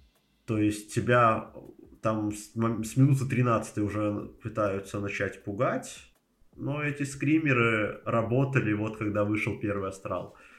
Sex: male